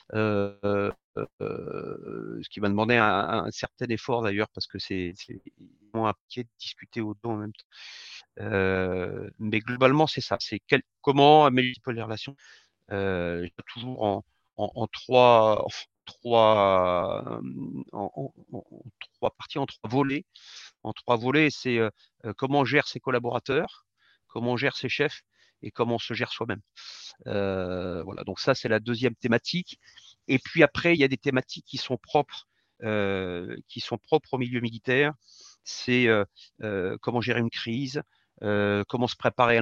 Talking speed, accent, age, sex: 170 wpm, French, 40-59, male